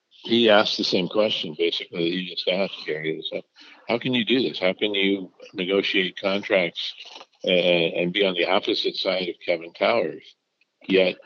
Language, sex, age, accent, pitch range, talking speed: English, male, 60-79, American, 90-105 Hz, 180 wpm